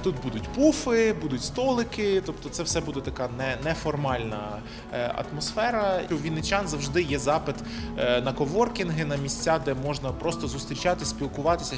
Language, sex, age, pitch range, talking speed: Ukrainian, male, 20-39, 135-180 Hz, 140 wpm